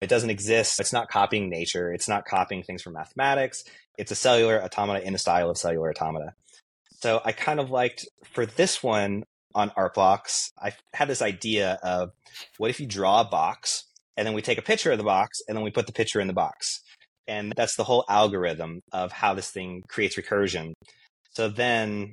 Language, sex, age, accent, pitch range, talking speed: English, male, 30-49, American, 90-110 Hz, 205 wpm